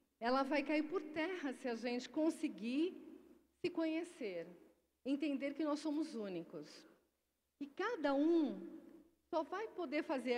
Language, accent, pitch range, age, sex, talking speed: Portuguese, Brazilian, 240-325 Hz, 40-59, female, 135 wpm